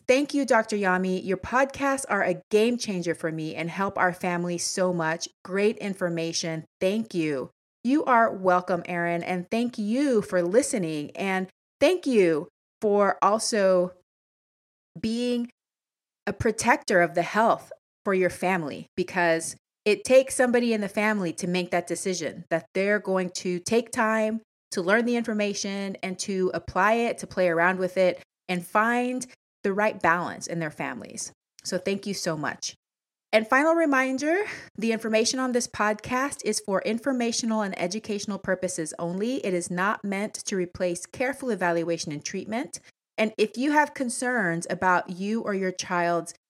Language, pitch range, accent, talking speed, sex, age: English, 175-225 Hz, American, 160 wpm, female, 30-49